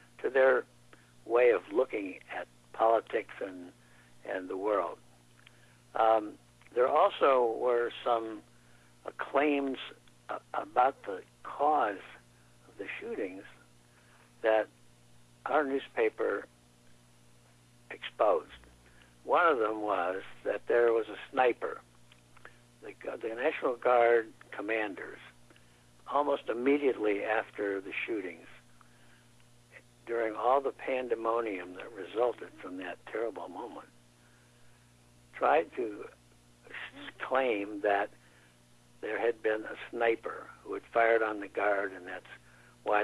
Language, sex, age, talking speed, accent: English, male, 60-79, 105 wpm, American